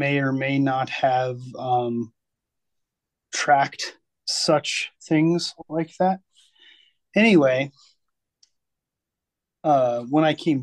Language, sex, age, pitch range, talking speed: English, male, 30-49, 125-150 Hz, 90 wpm